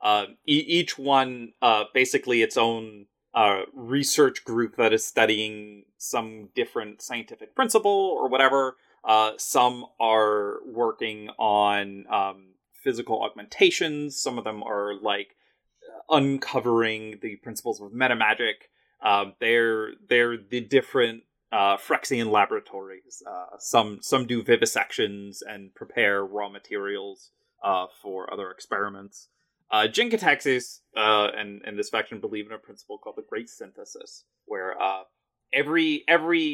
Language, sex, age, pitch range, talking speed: English, male, 30-49, 105-170 Hz, 125 wpm